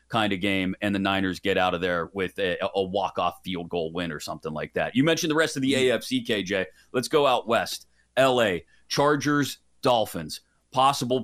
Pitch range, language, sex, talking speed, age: 105-135 Hz, English, male, 200 wpm, 30-49